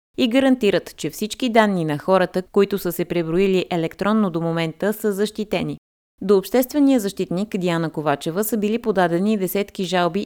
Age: 20-39